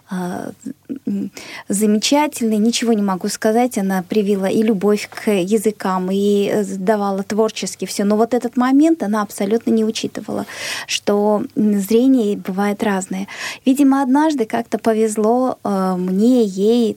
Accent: native